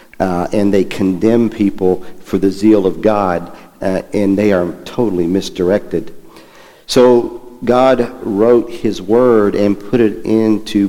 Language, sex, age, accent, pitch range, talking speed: English, male, 50-69, American, 95-110 Hz, 140 wpm